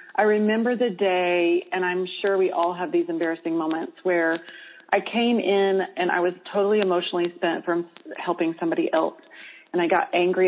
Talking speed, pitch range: 180 wpm, 170-225 Hz